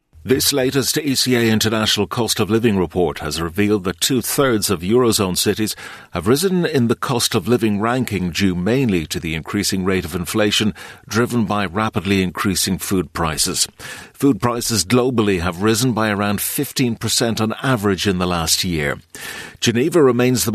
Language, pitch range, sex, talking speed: English, 90-115 Hz, male, 160 wpm